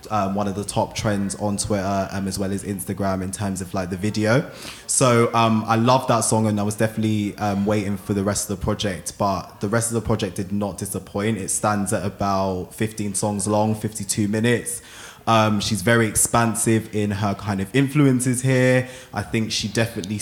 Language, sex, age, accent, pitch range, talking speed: English, male, 20-39, British, 100-115 Hz, 205 wpm